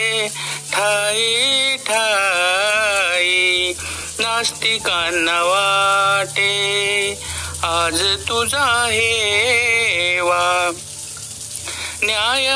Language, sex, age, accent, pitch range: Marathi, male, 50-69, native, 200-265 Hz